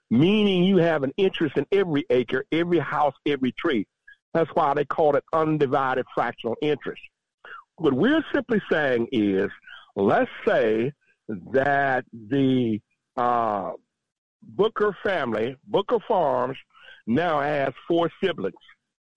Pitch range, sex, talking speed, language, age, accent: 140-210 Hz, male, 120 wpm, English, 60-79, American